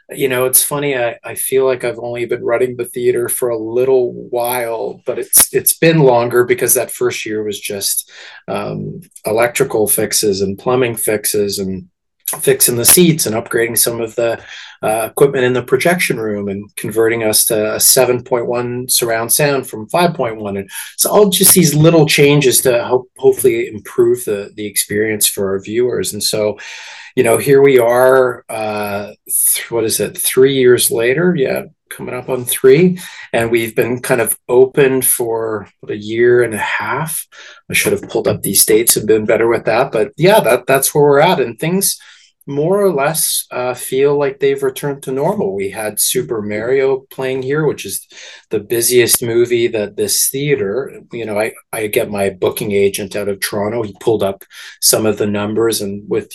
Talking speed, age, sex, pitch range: 185 wpm, 30-49, male, 110-175 Hz